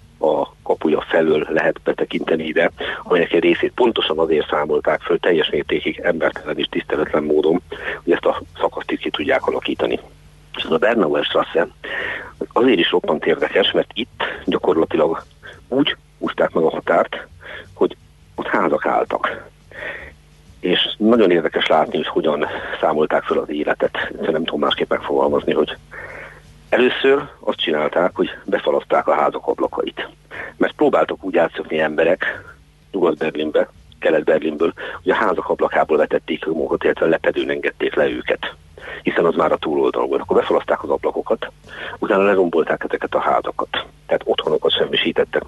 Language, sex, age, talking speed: Hungarian, male, 50-69, 140 wpm